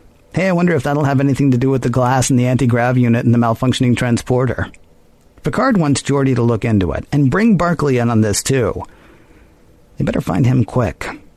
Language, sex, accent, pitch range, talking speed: English, male, American, 110-135 Hz, 205 wpm